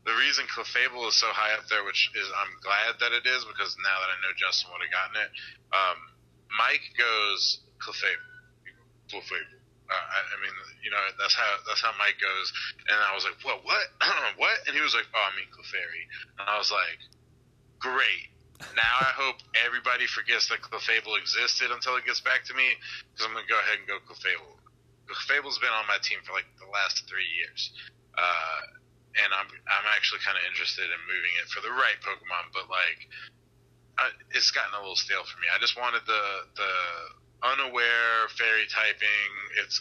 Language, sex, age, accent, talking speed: English, male, 30-49, American, 195 wpm